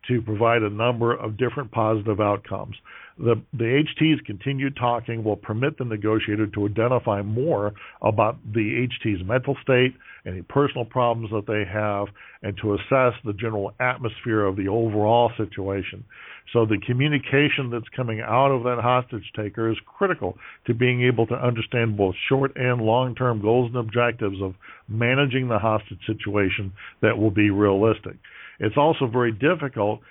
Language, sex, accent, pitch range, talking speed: English, male, American, 110-130 Hz, 155 wpm